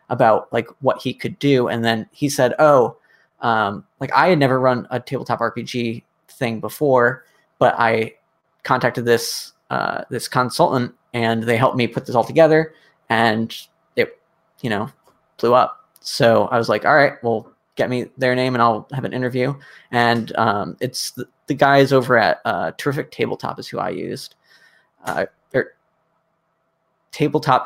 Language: English